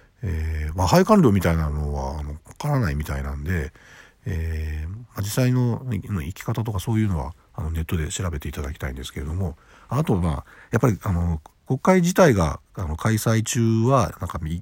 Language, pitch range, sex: Japanese, 80-115 Hz, male